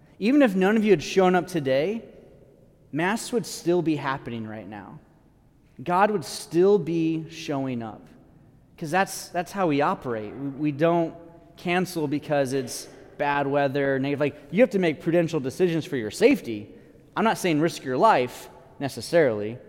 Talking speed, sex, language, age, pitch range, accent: 160 wpm, male, English, 30-49, 140-200 Hz, American